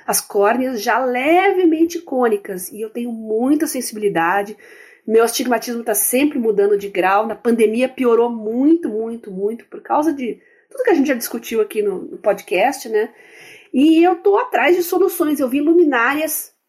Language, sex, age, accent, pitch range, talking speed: Portuguese, female, 40-59, Brazilian, 225-340 Hz, 160 wpm